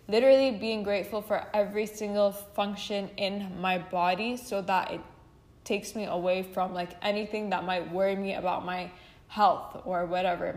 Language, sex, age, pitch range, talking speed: English, female, 10-29, 185-210 Hz, 165 wpm